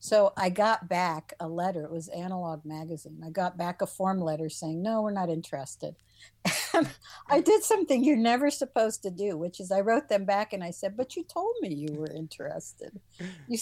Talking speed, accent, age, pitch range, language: 205 wpm, American, 60-79, 160-215 Hz, English